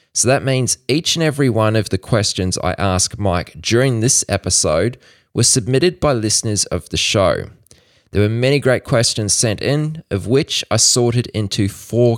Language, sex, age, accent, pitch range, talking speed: English, male, 20-39, Australian, 90-120 Hz, 175 wpm